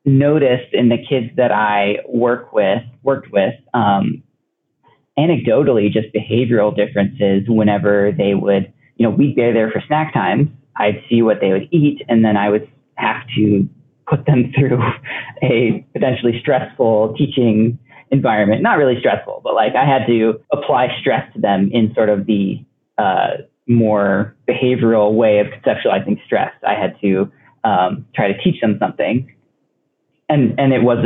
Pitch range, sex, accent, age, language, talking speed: 110-135 Hz, male, American, 30-49, English, 160 wpm